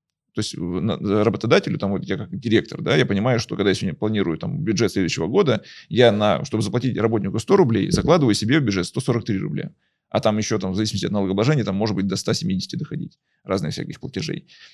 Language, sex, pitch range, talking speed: Russian, male, 105-145 Hz, 200 wpm